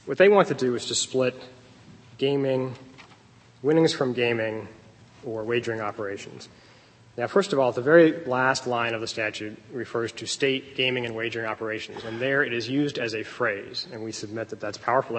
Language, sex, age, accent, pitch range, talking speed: English, male, 30-49, American, 115-130 Hz, 185 wpm